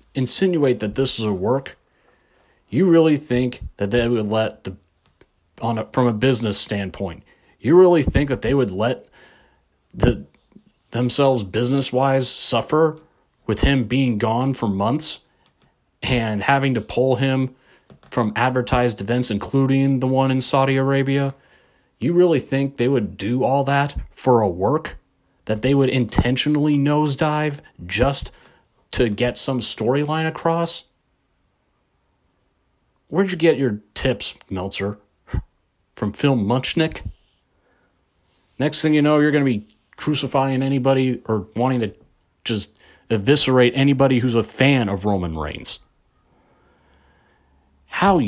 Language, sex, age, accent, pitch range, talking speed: English, male, 30-49, American, 105-135 Hz, 130 wpm